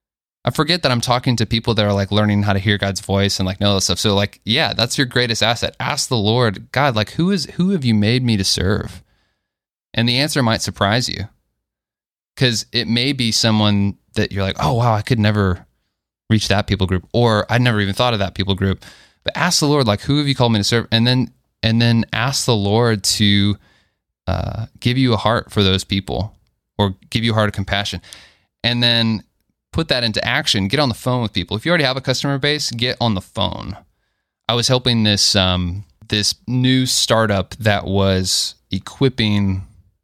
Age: 20-39